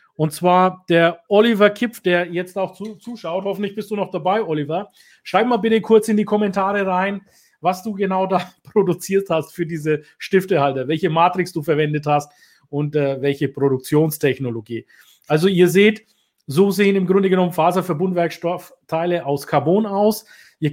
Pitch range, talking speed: 160-195 Hz, 160 wpm